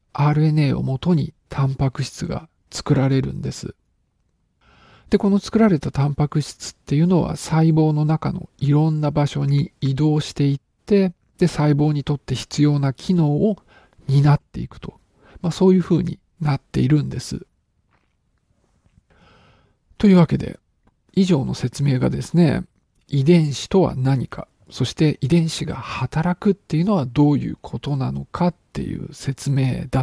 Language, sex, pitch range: Japanese, male, 130-165 Hz